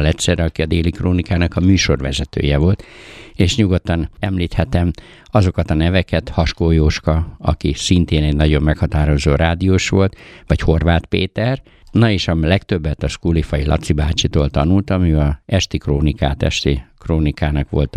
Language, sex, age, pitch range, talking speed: Hungarian, male, 60-79, 75-95 Hz, 140 wpm